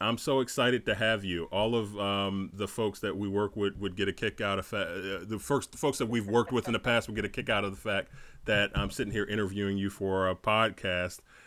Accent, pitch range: American, 95-110 Hz